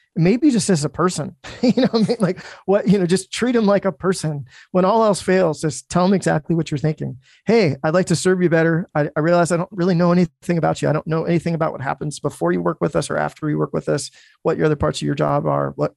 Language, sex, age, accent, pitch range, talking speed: English, male, 30-49, American, 140-165 Hz, 280 wpm